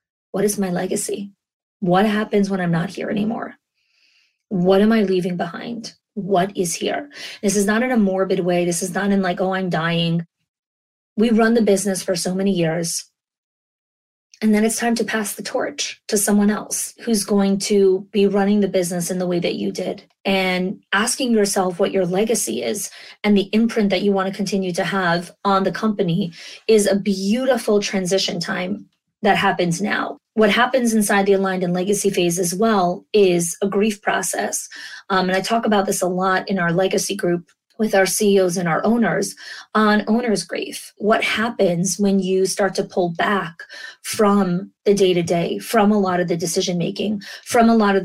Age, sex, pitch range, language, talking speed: 30-49, female, 185-210 Hz, English, 190 wpm